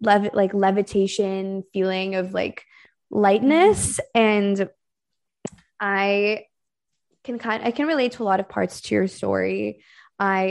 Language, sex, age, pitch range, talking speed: English, female, 20-39, 190-215 Hz, 130 wpm